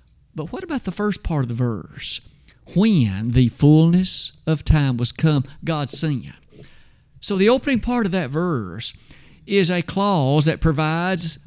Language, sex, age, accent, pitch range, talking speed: English, male, 50-69, American, 145-195 Hz, 155 wpm